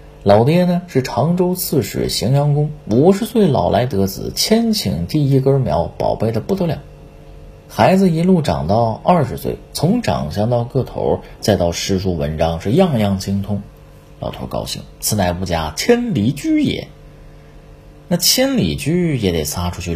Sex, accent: male, native